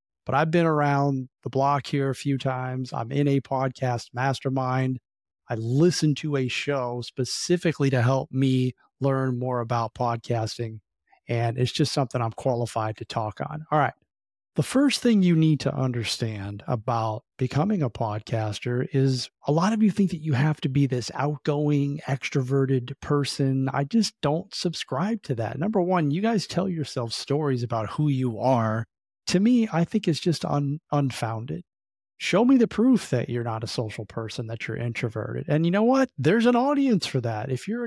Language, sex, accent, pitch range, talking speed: English, male, American, 125-160 Hz, 180 wpm